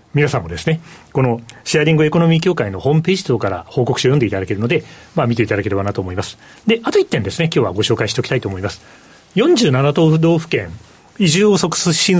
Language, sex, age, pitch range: Japanese, male, 40-59, 115-170 Hz